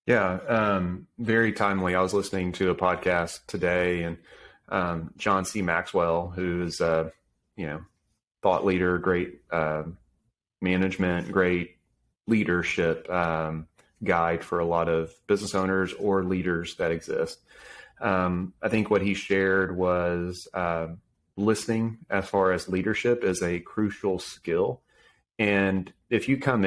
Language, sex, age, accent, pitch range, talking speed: English, male, 30-49, American, 90-105 Hz, 130 wpm